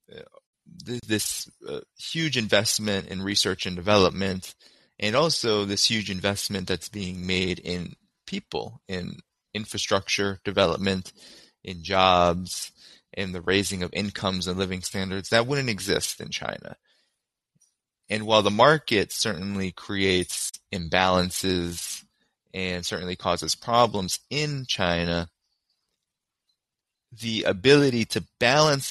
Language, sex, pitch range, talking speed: English, male, 90-110 Hz, 110 wpm